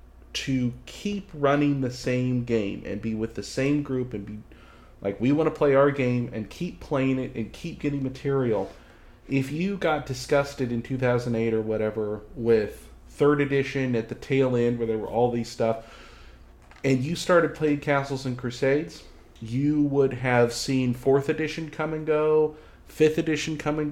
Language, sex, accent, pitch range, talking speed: English, male, American, 115-150 Hz, 175 wpm